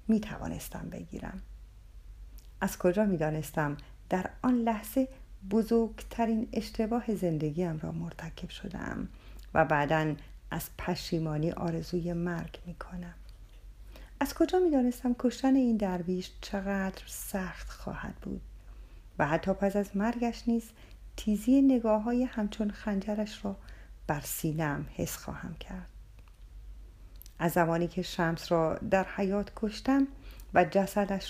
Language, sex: Persian, female